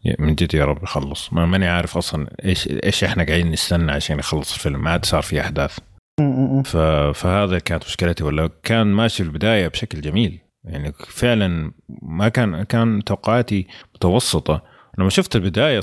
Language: Arabic